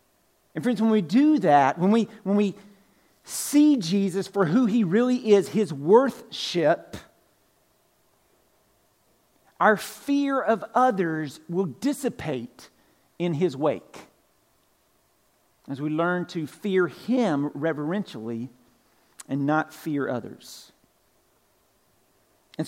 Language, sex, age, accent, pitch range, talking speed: English, male, 50-69, American, 170-220 Hz, 105 wpm